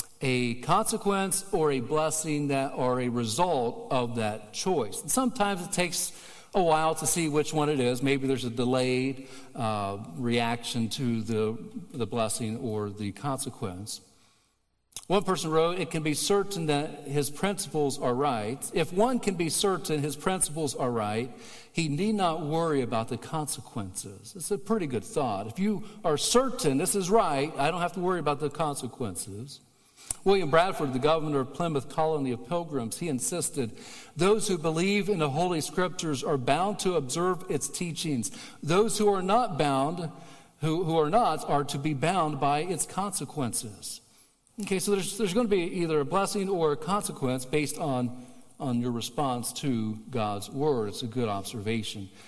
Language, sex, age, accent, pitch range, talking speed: English, male, 50-69, American, 125-175 Hz, 170 wpm